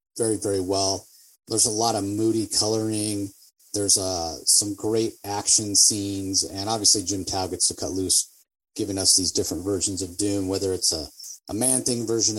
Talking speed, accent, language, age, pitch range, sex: 180 wpm, American, English, 30-49, 95-125 Hz, male